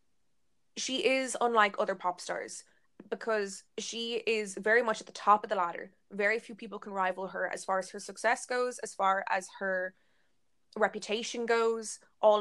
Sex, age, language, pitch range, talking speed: female, 20-39, English, 200-240 Hz, 175 wpm